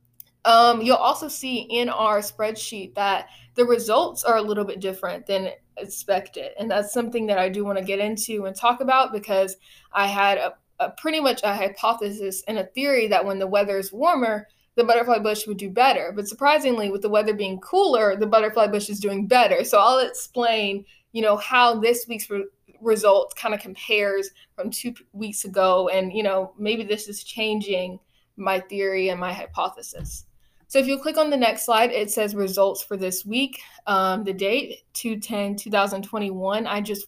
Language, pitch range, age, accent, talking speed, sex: English, 195-230 Hz, 20-39, American, 190 wpm, female